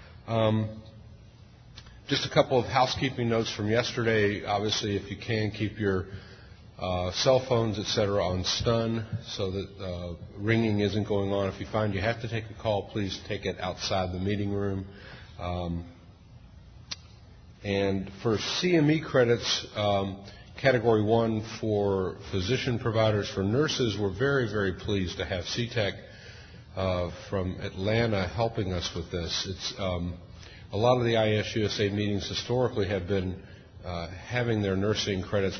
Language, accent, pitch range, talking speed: English, American, 95-110 Hz, 150 wpm